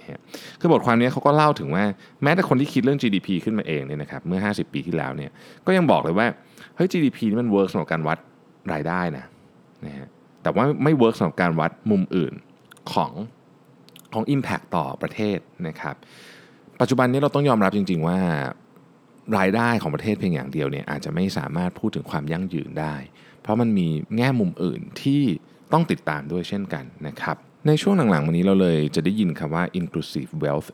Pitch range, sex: 85-135 Hz, male